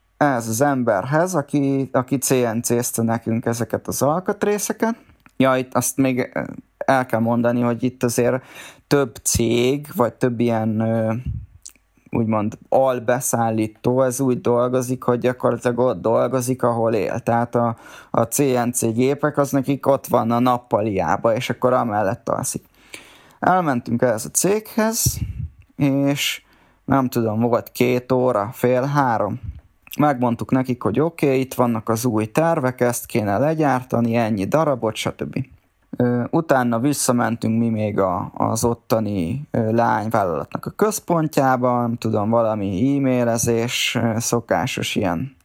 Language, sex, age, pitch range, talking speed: Hungarian, male, 20-39, 115-135 Hz, 125 wpm